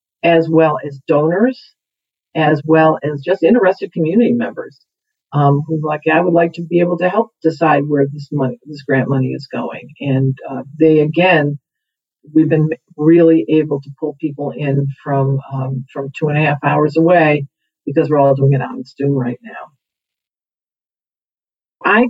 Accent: American